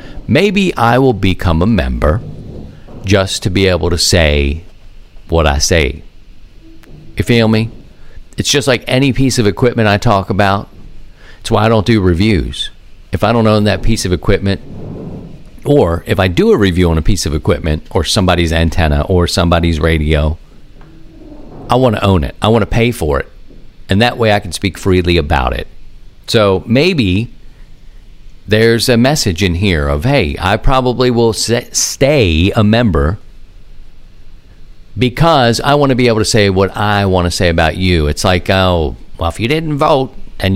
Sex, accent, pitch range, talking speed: male, American, 85-115 Hz, 175 wpm